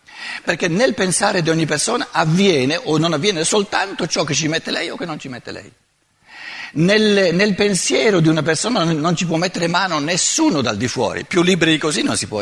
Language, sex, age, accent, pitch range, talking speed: Italian, male, 60-79, native, 160-215 Hz, 220 wpm